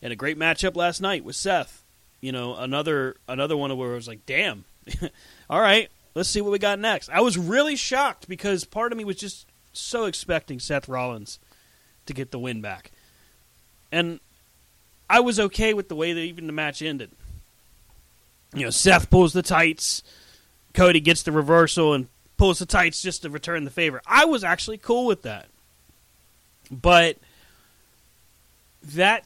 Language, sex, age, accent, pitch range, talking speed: English, male, 30-49, American, 120-180 Hz, 170 wpm